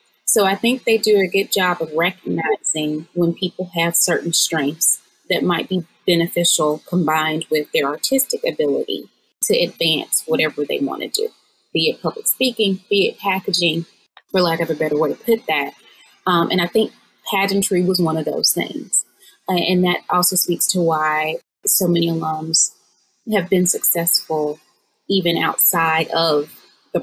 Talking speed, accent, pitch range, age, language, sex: 165 wpm, American, 155-190 Hz, 20-39, English, female